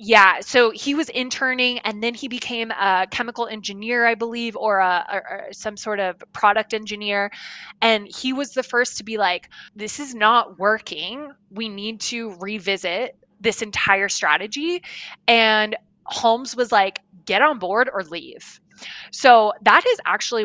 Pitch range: 195-245 Hz